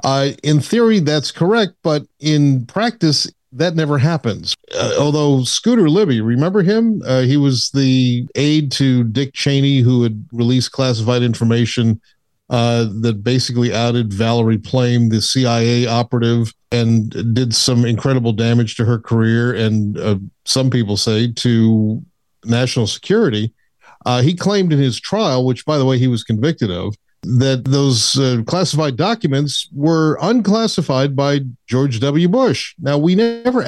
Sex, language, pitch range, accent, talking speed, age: male, English, 115-150 Hz, American, 150 wpm, 50-69